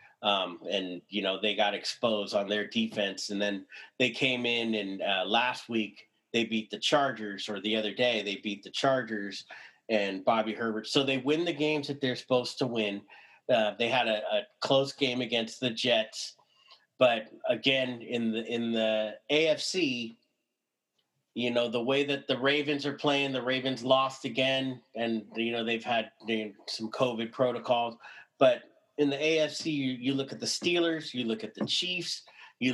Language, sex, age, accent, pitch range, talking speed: English, male, 30-49, American, 110-140 Hz, 180 wpm